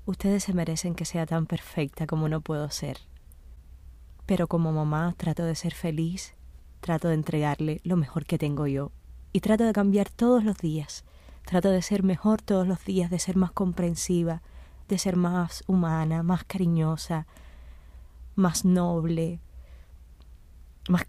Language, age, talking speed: Spanish, 20-39, 150 wpm